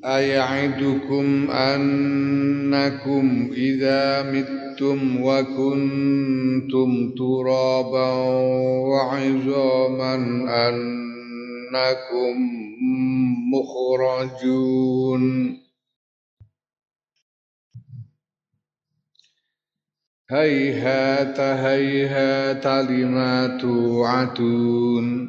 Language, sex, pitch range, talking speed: Indonesian, male, 125-135 Hz, 35 wpm